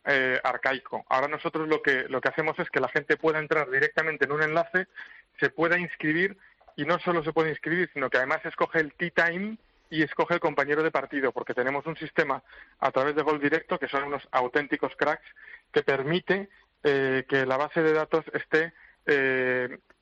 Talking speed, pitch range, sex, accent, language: 195 wpm, 135-165 Hz, male, Spanish, Spanish